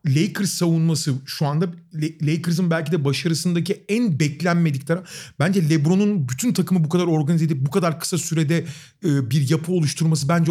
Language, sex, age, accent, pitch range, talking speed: Turkish, male, 40-59, native, 135-175 Hz, 155 wpm